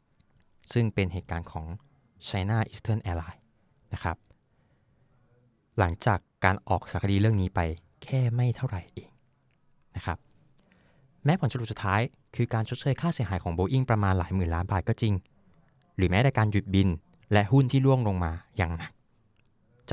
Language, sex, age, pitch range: Thai, male, 20-39, 95-125 Hz